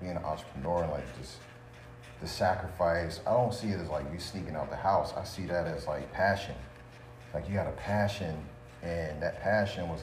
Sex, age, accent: male, 40-59, American